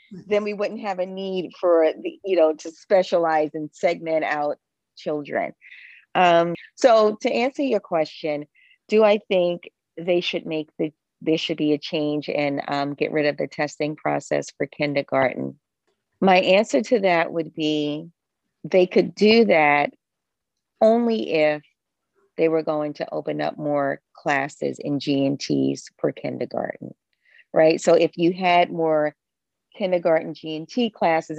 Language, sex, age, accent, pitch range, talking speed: English, female, 40-59, American, 150-185 Hz, 145 wpm